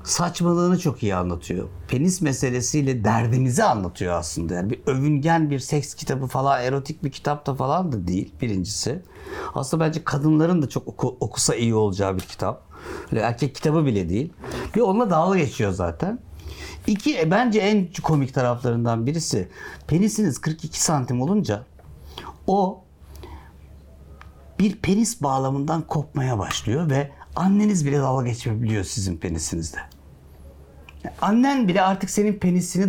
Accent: native